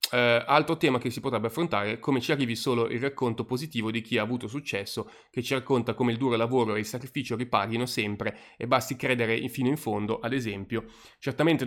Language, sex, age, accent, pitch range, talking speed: Italian, male, 30-49, native, 115-135 Hz, 210 wpm